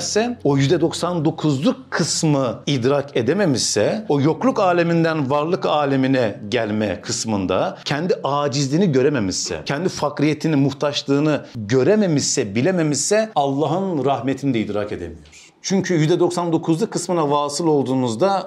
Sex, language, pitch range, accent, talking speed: male, Turkish, 125-175 Hz, native, 100 wpm